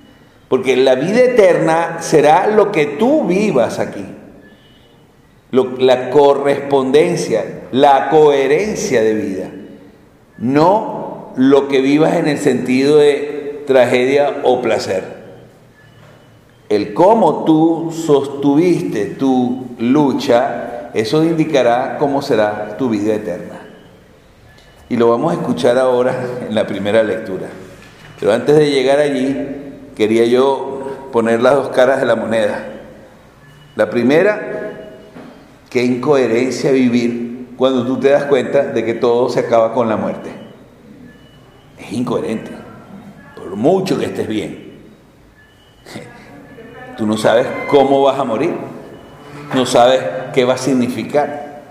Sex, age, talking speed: male, 50-69, 120 wpm